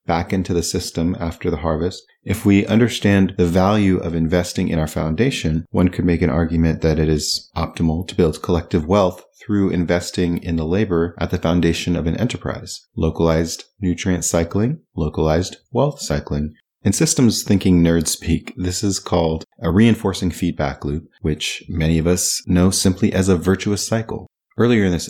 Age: 30-49